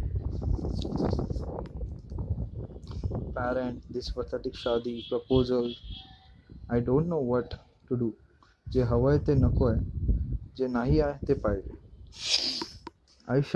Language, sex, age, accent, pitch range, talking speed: Marathi, male, 20-39, native, 110-140 Hz, 95 wpm